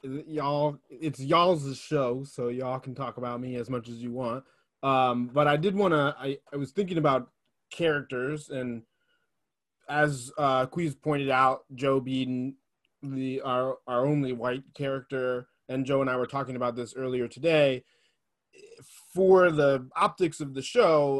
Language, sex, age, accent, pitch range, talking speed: English, male, 20-39, American, 125-150 Hz, 155 wpm